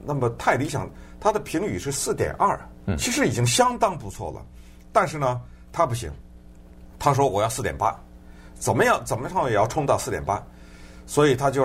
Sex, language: male, Chinese